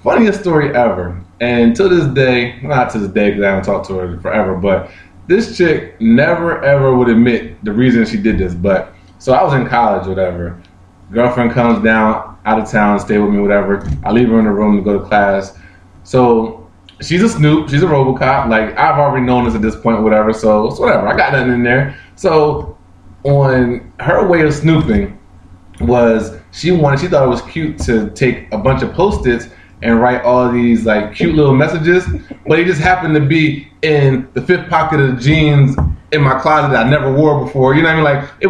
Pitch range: 110-155 Hz